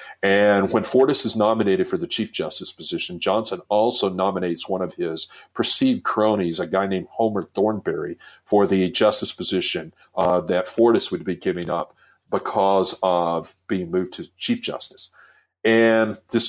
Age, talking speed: 50-69, 155 wpm